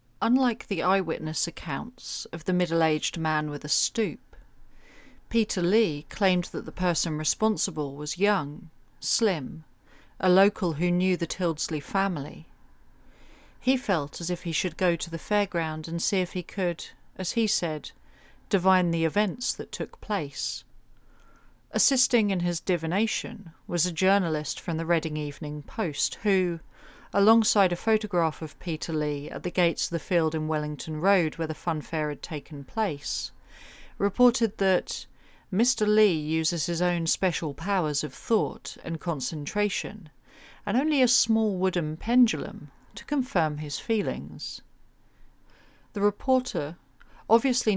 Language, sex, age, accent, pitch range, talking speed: English, female, 40-59, British, 155-200 Hz, 140 wpm